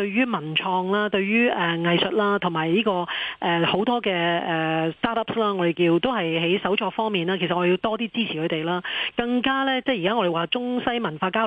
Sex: female